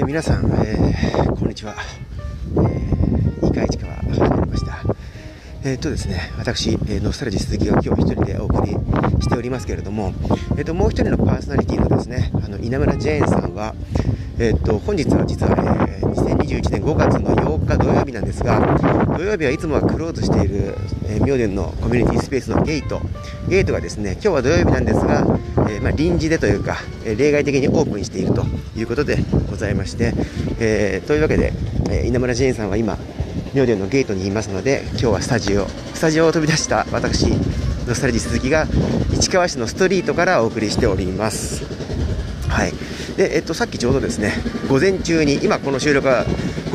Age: 40-59